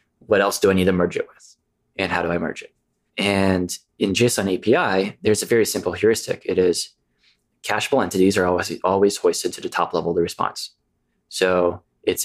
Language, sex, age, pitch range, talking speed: English, male, 20-39, 95-130 Hz, 200 wpm